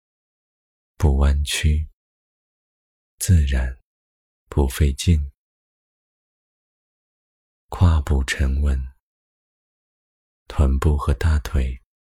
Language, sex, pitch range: Chinese, male, 65-80 Hz